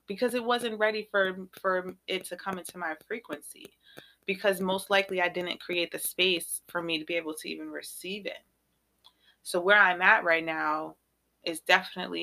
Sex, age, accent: female, 30-49, American